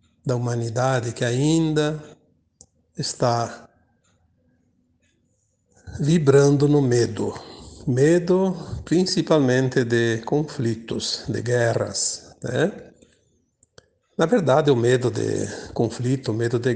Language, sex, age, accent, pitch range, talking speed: Portuguese, male, 60-79, Brazilian, 115-140 Hz, 85 wpm